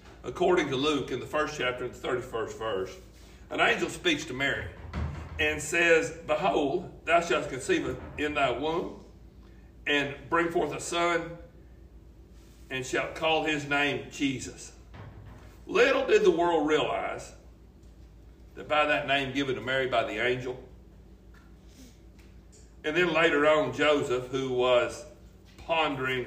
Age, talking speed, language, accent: 60-79, 135 wpm, English, American